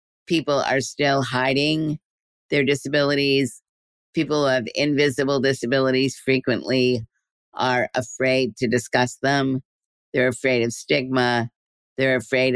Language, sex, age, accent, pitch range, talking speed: English, female, 50-69, American, 120-140 Hz, 105 wpm